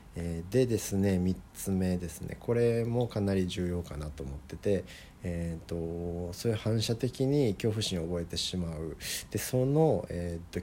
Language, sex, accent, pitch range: Japanese, male, native, 80-100 Hz